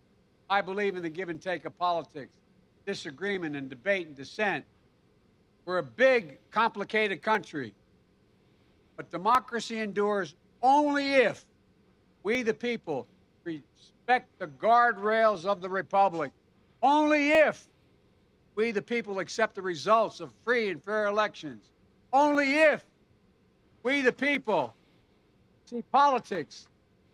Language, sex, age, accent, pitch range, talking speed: English, male, 60-79, American, 165-240 Hz, 115 wpm